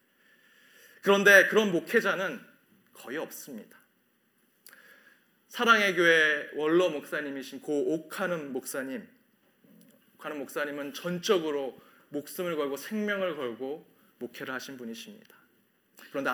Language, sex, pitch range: Korean, male, 135-195 Hz